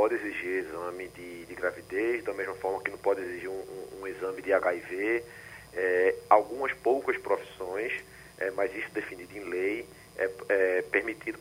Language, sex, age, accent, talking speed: Portuguese, male, 40-59, Brazilian, 170 wpm